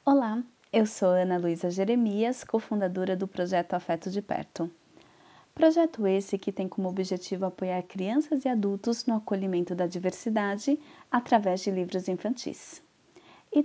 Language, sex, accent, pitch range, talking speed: Portuguese, female, Brazilian, 190-245 Hz, 135 wpm